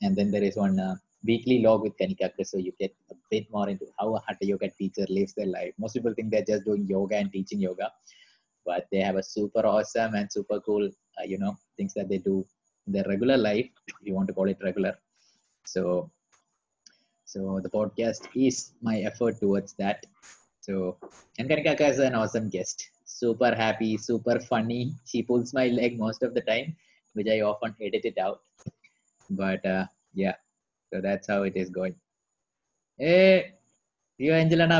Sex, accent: male, Indian